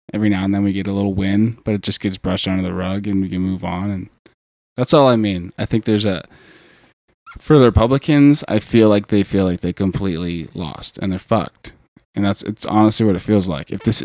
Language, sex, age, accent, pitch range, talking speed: English, male, 20-39, American, 95-110 Hz, 240 wpm